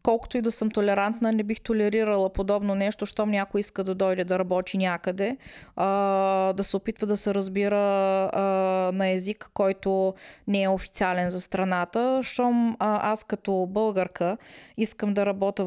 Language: Bulgarian